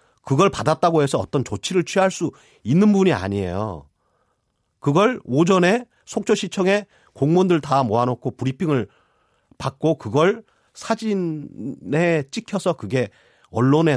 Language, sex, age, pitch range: Korean, male, 40-59, 125-185 Hz